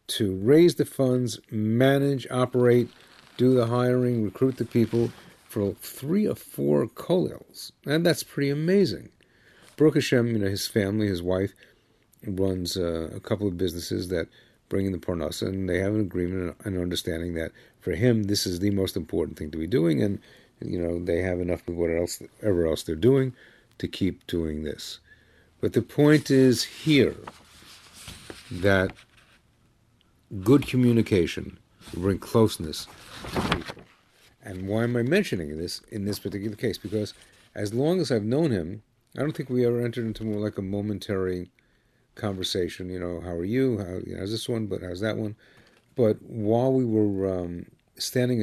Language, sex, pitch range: English, male, 90-120 Hz